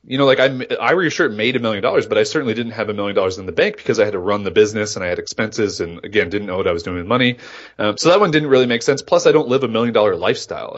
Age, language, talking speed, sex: 30-49, English, 350 wpm, male